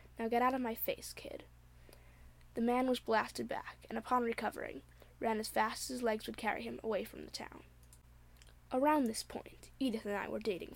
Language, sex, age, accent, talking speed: English, female, 10-29, American, 200 wpm